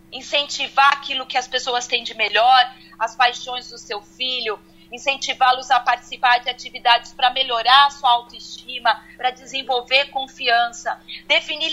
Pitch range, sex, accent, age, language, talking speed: 245-285 Hz, female, Brazilian, 40-59, Portuguese, 140 wpm